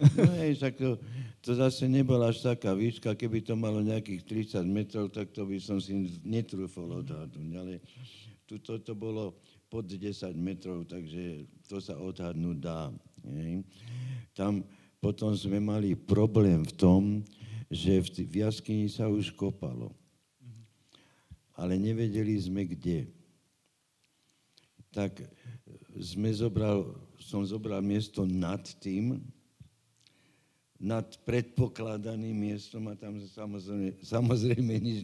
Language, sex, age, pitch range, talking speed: Slovak, male, 60-79, 95-115 Hz, 120 wpm